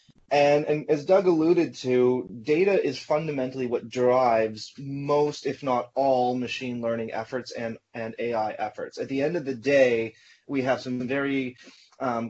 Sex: male